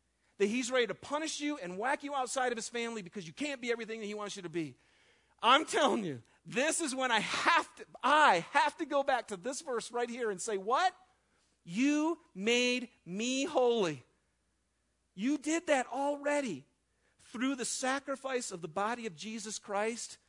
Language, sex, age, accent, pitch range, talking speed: English, male, 40-59, American, 150-245 Hz, 180 wpm